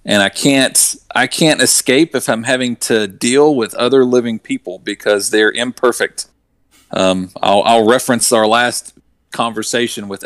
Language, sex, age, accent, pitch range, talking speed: English, male, 40-59, American, 110-140 Hz, 150 wpm